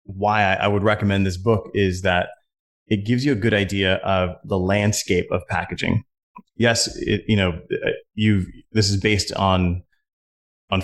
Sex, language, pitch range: male, English, 95-115 Hz